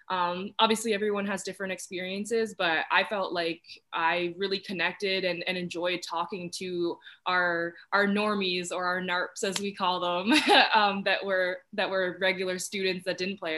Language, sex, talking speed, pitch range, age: English, female, 170 wpm, 170-195 Hz, 20-39